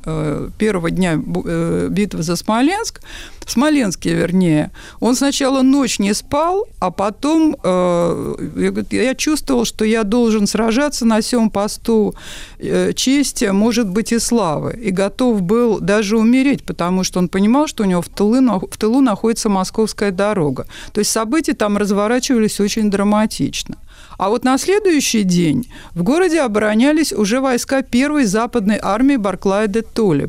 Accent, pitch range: native, 180-245 Hz